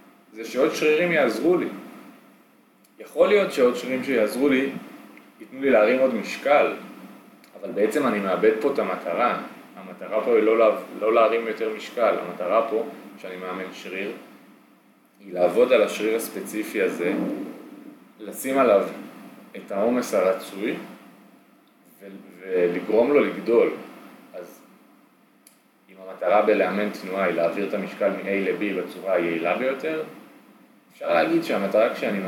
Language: Hebrew